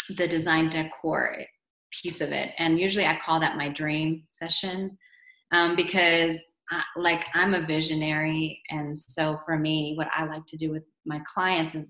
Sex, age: female, 30-49